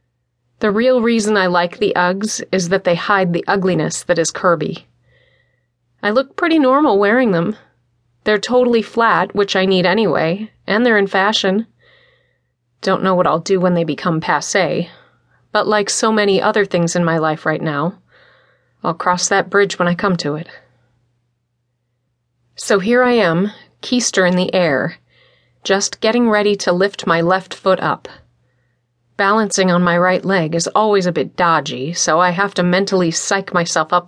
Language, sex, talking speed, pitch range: English, female, 170 wpm, 145-205 Hz